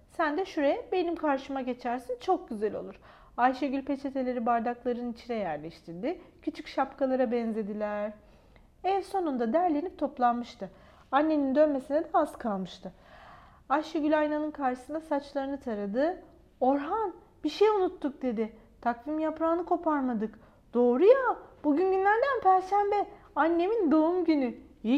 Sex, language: female, Turkish